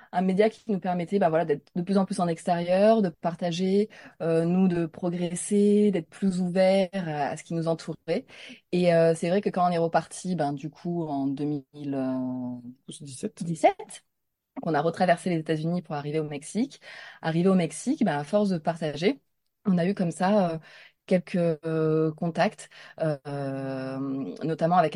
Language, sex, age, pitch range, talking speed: French, female, 20-39, 150-195 Hz, 175 wpm